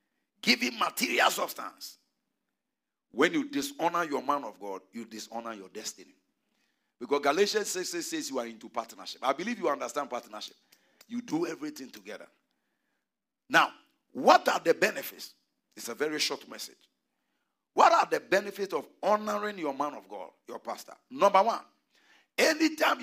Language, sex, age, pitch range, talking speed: English, male, 50-69, 170-280 Hz, 150 wpm